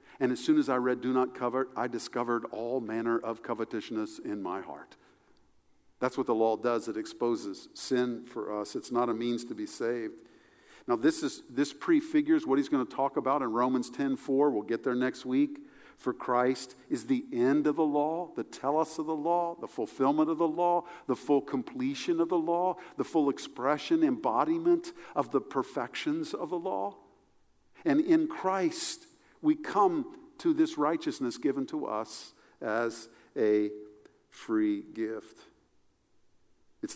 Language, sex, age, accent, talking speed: English, male, 50-69, American, 170 wpm